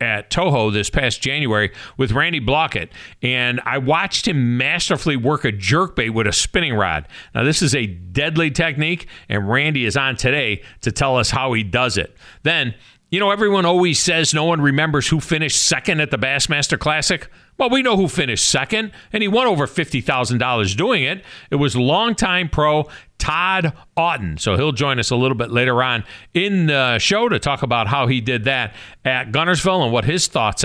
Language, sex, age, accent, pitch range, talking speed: English, male, 50-69, American, 115-160 Hz, 190 wpm